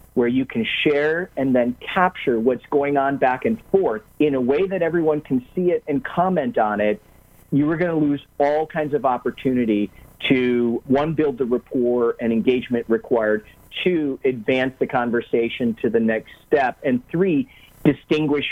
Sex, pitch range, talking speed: male, 120-155 Hz, 170 wpm